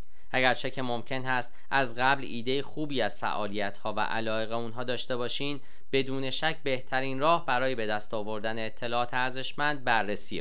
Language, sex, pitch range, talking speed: Persian, male, 115-140 Hz, 155 wpm